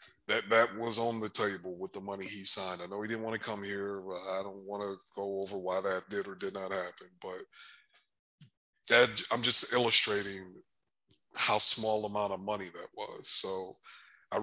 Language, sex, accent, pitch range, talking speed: English, male, American, 100-115 Hz, 195 wpm